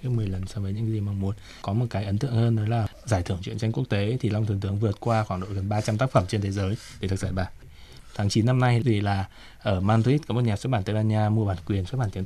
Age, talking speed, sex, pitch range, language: 20-39, 315 wpm, male, 100-115 Hz, Vietnamese